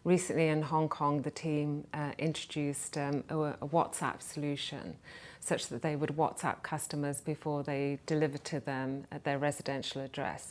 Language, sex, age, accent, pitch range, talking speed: English, female, 30-49, British, 145-165 Hz, 155 wpm